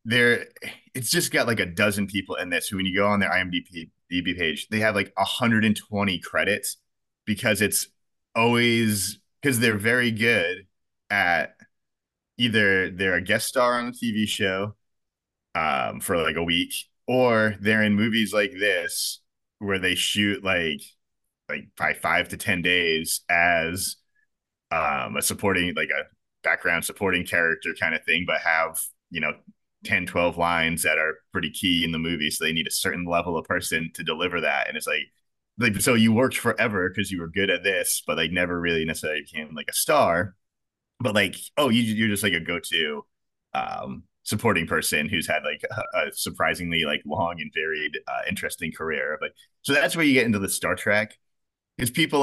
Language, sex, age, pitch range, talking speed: English, male, 30-49, 90-115 Hz, 180 wpm